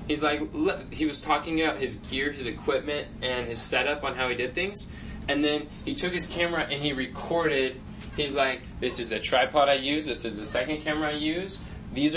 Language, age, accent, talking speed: English, 10-29, American, 215 wpm